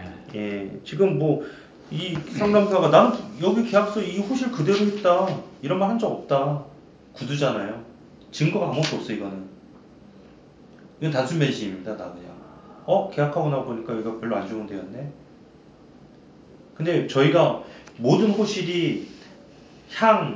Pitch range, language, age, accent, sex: 125-175 Hz, Korean, 30-49, native, male